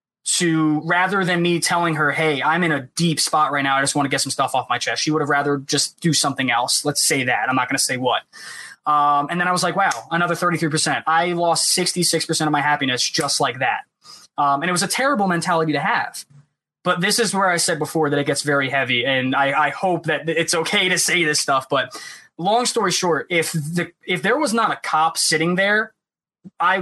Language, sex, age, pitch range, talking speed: English, male, 20-39, 150-185 Hz, 235 wpm